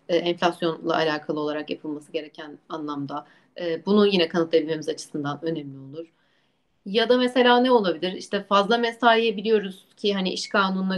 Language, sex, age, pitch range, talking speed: Turkish, female, 30-49, 165-220 Hz, 140 wpm